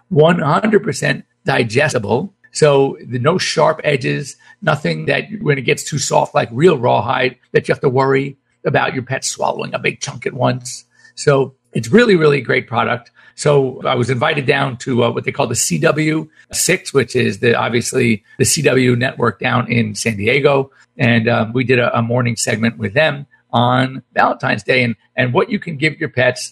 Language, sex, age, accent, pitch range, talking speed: English, male, 50-69, American, 120-150 Hz, 180 wpm